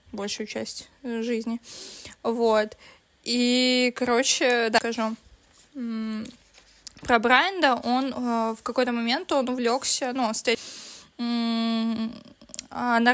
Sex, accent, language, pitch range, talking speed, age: female, native, Russian, 225-250 Hz, 95 wpm, 20-39